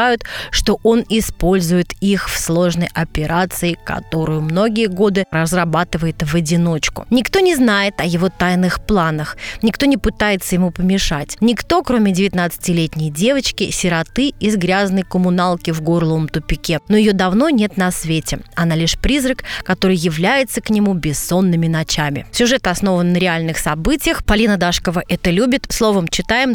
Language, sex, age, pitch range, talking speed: Russian, female, 20-39, 170-225 Hz, 140 wpm